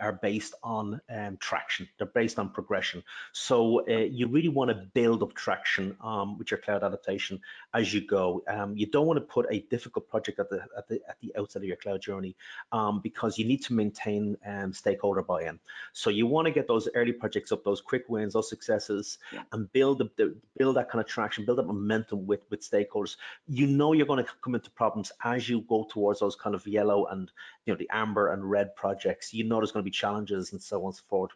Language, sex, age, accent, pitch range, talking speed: English, male, 30-49, Irish, 100-120 Hz, 230 wpm